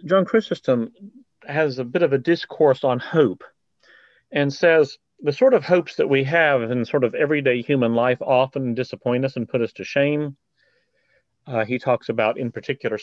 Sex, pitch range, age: male, 115-150 Hz, 40-59